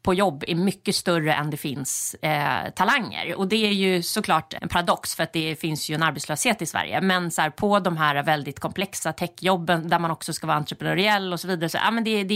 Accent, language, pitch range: native, Swedish, 165-210 Hz